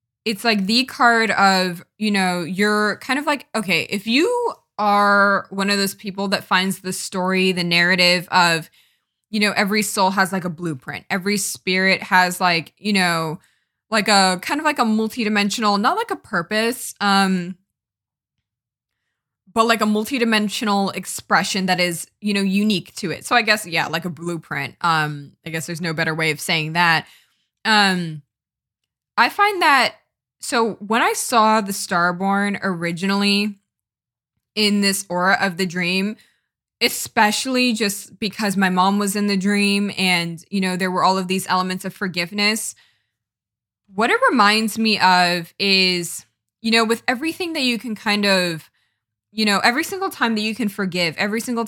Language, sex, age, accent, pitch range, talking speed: English, female, 20-39, American, 175-215 Hz, 165 wpm